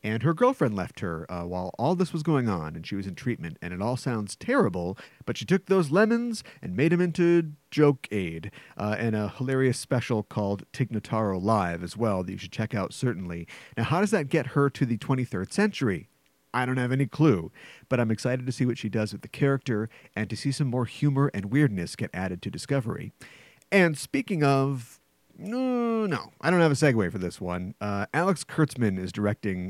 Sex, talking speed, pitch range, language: male, 210 wpm, 105-150 Hz, English